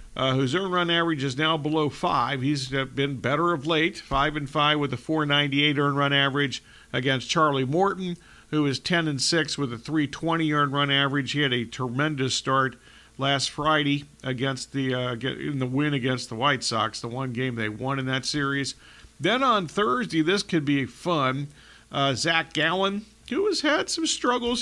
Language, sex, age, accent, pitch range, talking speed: English, male, 50-69, American, 135-165 Hz, 190 wpm